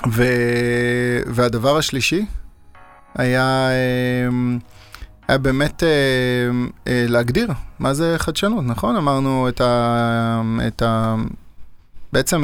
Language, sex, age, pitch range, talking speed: Hebrew, male, 30-49, 115-135 Hz, 80 wpm